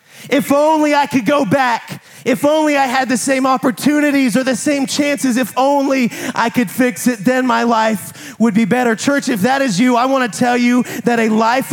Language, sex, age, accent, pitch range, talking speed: English, male, 30-49, American, 200-255 Hz, 215 wpm